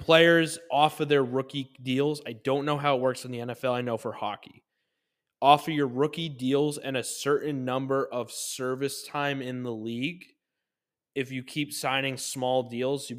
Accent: American